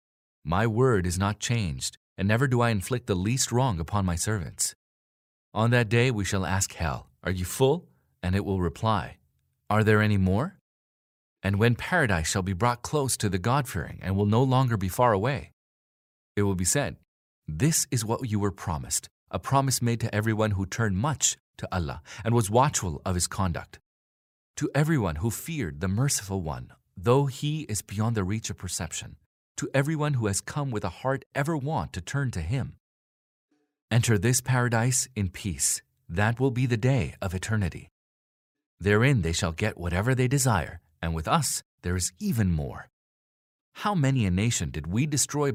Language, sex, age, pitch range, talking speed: English, male, 30-49, 90-125 Hz, 180 wpm